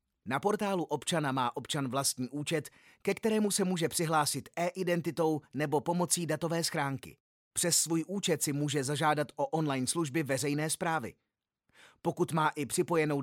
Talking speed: 145 wpm